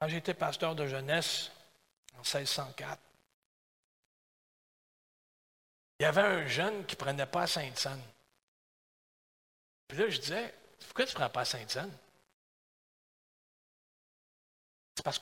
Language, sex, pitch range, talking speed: French, male, 135-185 Hz, 120 wpm